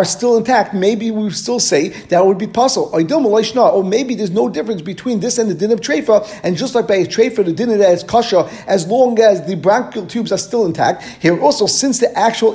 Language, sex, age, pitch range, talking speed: English, male, 50-69, 195-235 Hz, 225 wpm